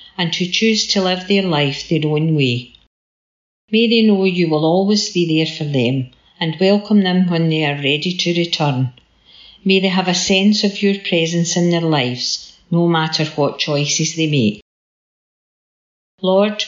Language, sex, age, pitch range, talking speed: English, female, 50-69, 150-185 Hz, 170 wpm